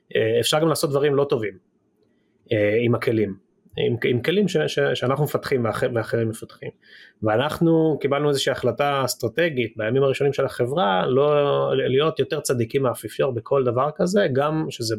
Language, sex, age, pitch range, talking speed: Hebrew, male, 30-49, 115-145 Hz, 150 wpm